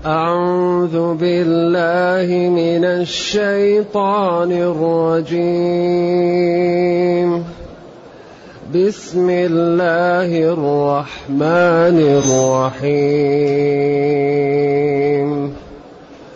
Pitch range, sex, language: 160-180 Hz, male, Arabic